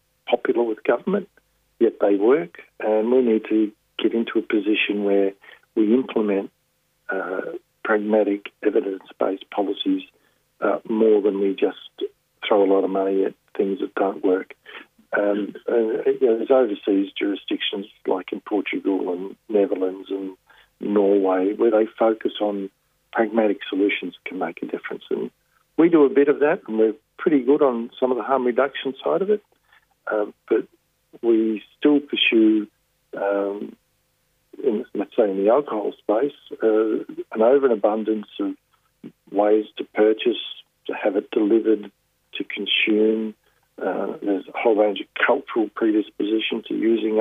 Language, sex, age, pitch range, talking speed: English, male, 50-69, 105-135 Hz, 145 wpm